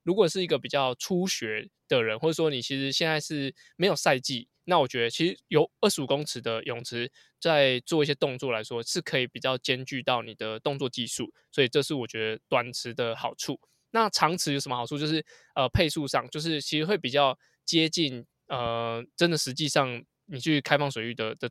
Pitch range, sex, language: 125-155 Hz, male, Chinese